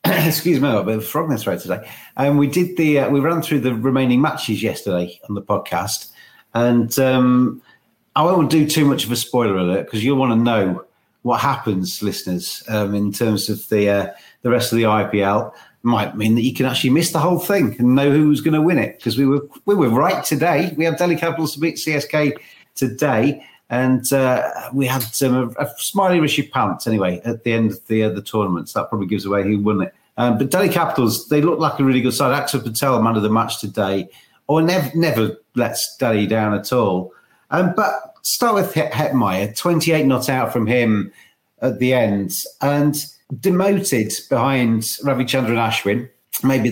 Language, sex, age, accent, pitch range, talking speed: English, male, 40-59, British, 110-150 Hz, 205 wpm